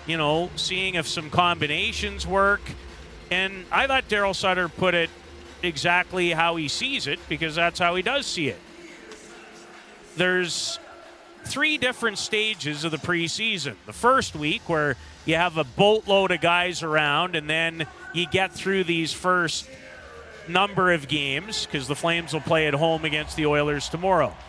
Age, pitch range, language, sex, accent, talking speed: 40-59, 170-220 Hz, English, male, American, 160 wpm